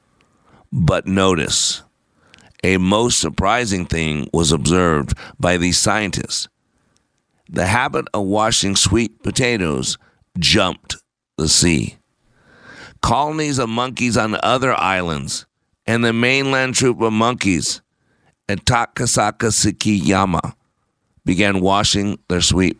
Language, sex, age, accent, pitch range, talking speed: English, male, 50-69, American, 95-115 Hz, 100 wpm